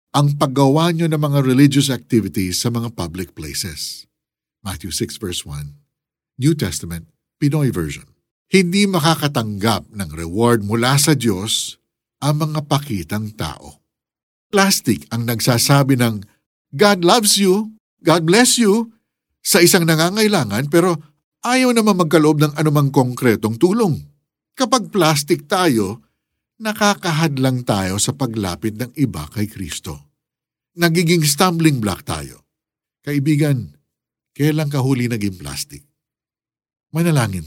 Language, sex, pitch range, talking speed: Filipino, male, 100-155 Hz, 115 wpm